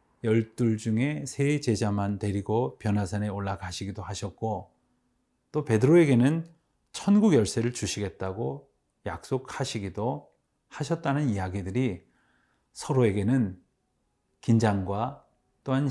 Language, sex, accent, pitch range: Korean, male, native, 95-130 Hz